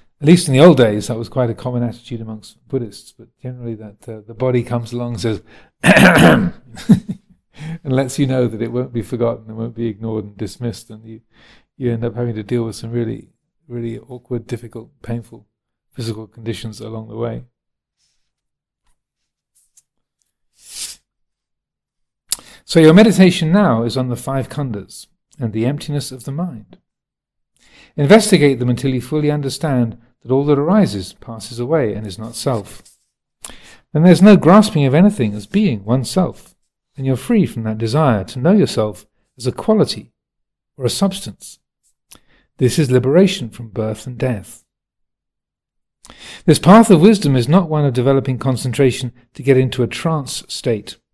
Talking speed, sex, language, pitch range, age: 165 wpm, male, English, 115-145 Hz, 40-59